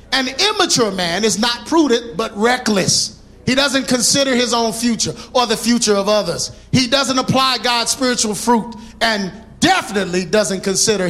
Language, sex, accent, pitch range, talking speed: English, male, American, 195-265 Hz, 155 wpm